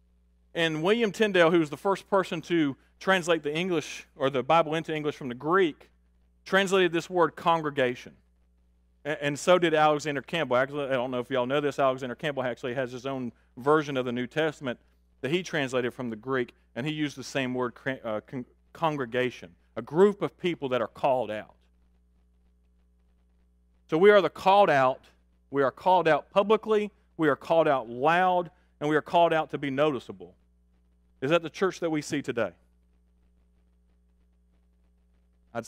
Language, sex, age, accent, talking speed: English, male, 40-59, American, 170 wpm